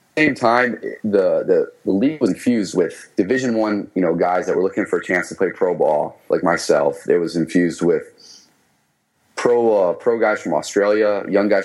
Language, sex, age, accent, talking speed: English, male, 30-49, American, 195 wpm